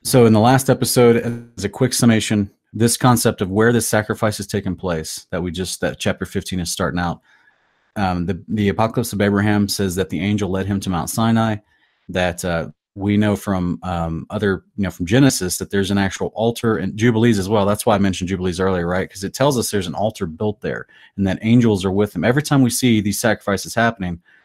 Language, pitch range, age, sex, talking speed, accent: English, 95-115 Hz, 30-49, male, 225 wpm, American